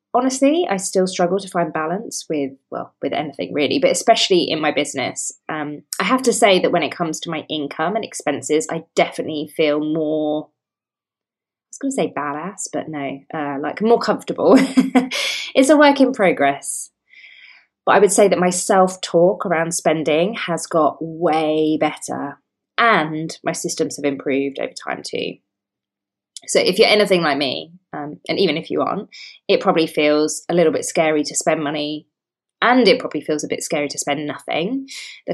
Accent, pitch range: British, 150-200 Hz